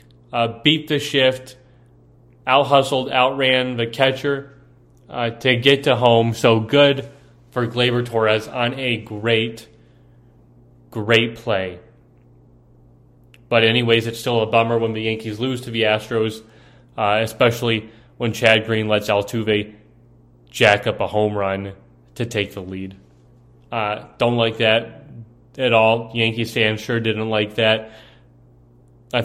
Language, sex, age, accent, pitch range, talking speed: English, male, 30-49, American, 90-120 Hz, 135 wpm